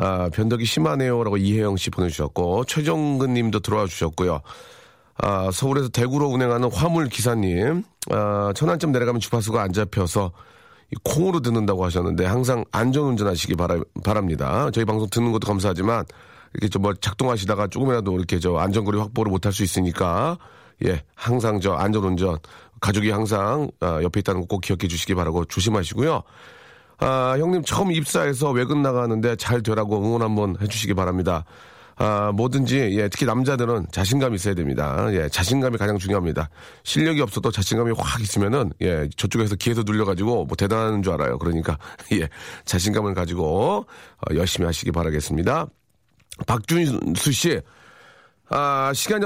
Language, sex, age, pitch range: Korean, male, 40-59, 95-125 Hz